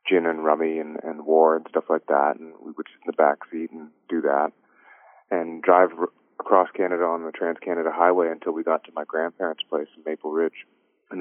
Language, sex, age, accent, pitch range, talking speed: English, male, 30-49, American, 75-85 Hz, 220 wpm